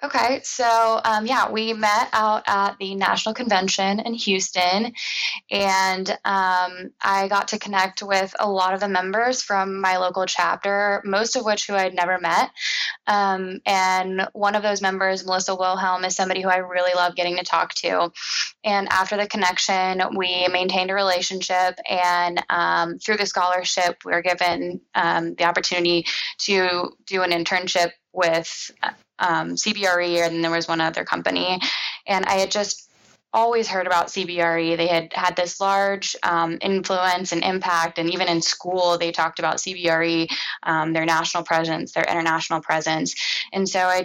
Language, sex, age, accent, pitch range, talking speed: English, female, 10-29, American, 175-195 Hz, 165 wpm